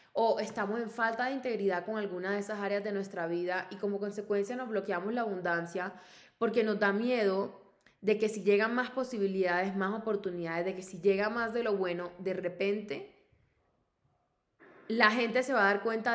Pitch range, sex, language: 190-230 Hz, female, Spanish